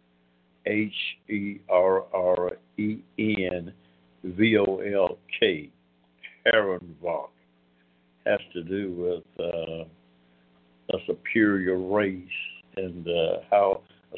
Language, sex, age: English, male, 60-79